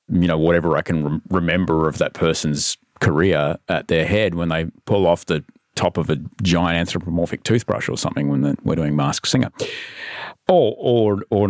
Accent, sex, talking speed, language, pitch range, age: Australian, male, 175 wpm, English, 80-100 Hz, 40-59